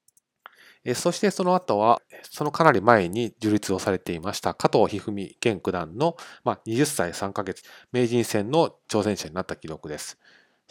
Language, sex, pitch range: Japanese, male, 100-145 Hz